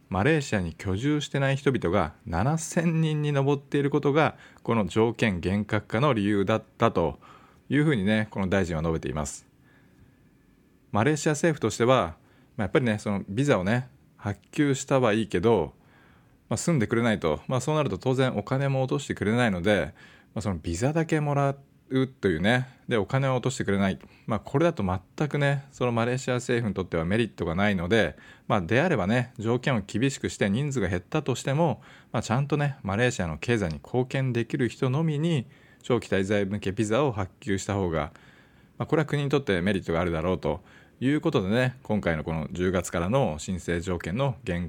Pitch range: 100-140 Hz